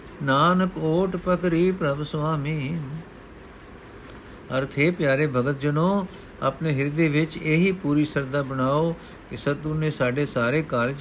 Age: 60-79